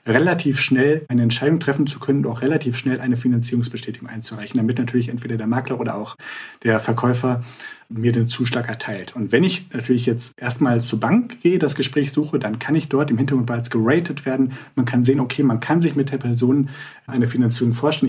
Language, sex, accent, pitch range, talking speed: German, male, German, 120-145 Hz, 200 wpm